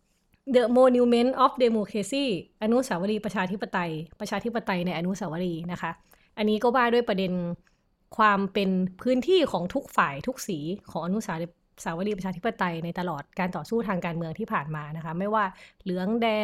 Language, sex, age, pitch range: Thai, female, 20-39, 180-235 Hz